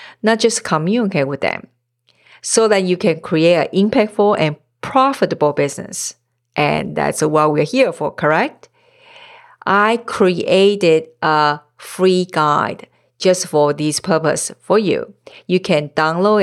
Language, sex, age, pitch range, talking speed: English, female, 50-69, 160-230 Hz, 130 wpm